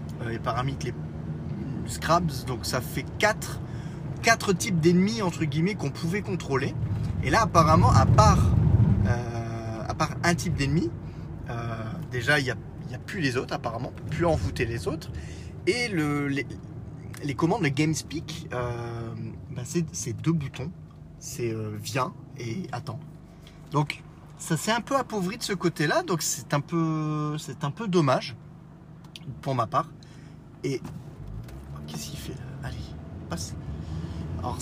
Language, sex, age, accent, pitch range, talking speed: French, male, 30-49, French, 115-160 Hz, 160 wpm